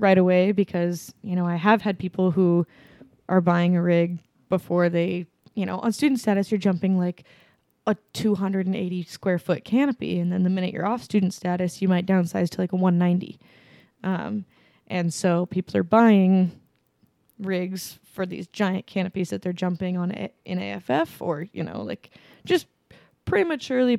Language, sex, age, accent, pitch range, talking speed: English, female, 20-39, American, 180-205 Hz, 170 wpm